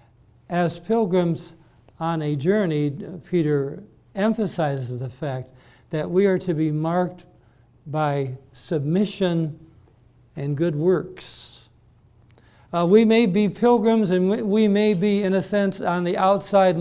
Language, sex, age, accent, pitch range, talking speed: English, male, 60-79, American, 130-185 Hz, 130 wpm